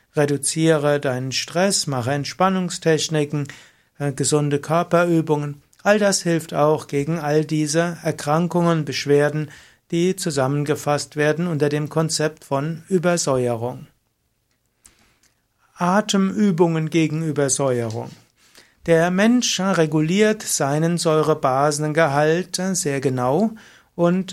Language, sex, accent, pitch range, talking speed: German, male, German, 145-170 Hz, 90 wpm